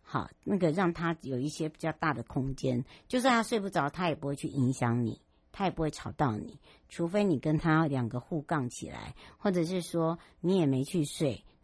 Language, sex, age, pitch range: Chinese, male, 60-79, 135-175 Hz